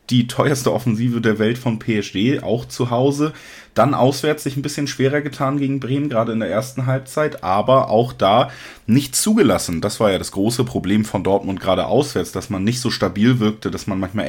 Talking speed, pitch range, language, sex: 200 wpm, 105-125 Hz, German, male